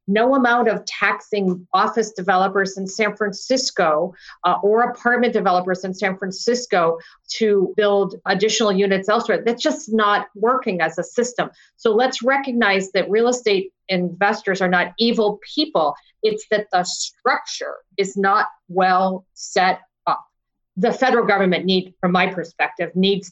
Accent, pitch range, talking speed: American, 180-210 Hz, 145 wpm